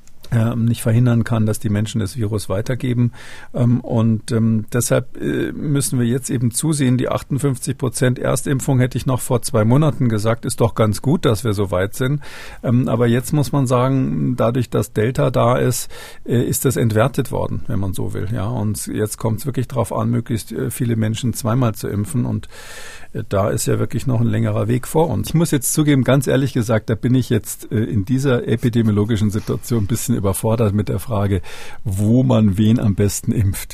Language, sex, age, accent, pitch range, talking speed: German, male, 50-69, German, 110-130 Hz, 190 wpm